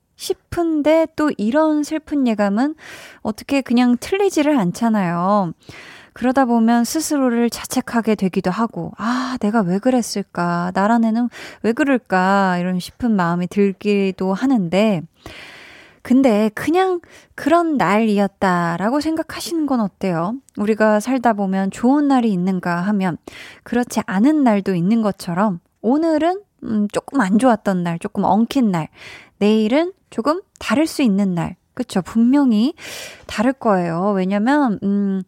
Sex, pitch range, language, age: female, 195-270 Hz, Korean, 20-39